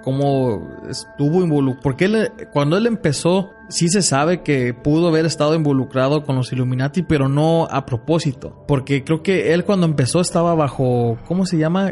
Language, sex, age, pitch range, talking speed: Spanish, male, 30-49, 135-165 Hz, 170 wpm